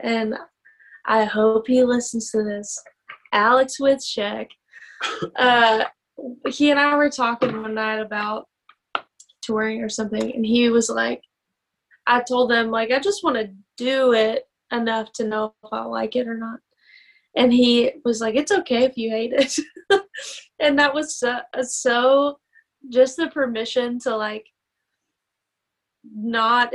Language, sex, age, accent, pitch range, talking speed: English, female, 10-29, American, 220-255 Hz, 145 wpm